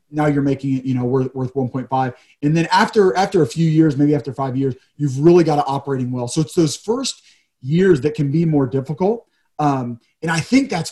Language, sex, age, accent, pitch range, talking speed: English, male, 30-49, American, 130-160 Hz, 225 wpm